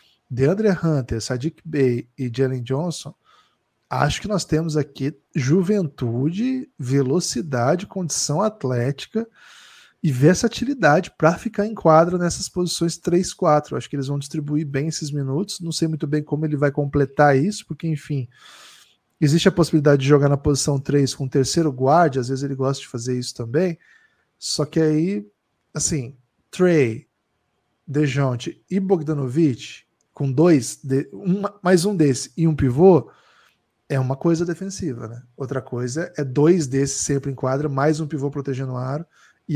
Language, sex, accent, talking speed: Portuguese, male, Brazilian, 155 wpm